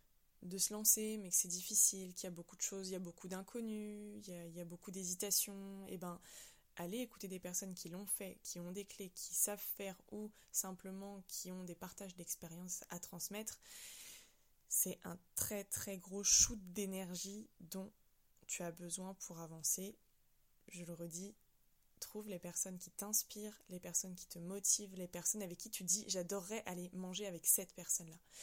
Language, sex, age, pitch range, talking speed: French, female, 20-39, 175-205 Hz, 190 wpm